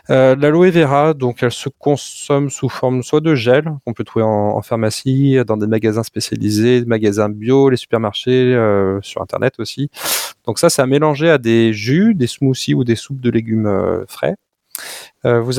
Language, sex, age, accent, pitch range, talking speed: French, male, 20-39, French, 110-135 Hz, 190 wpm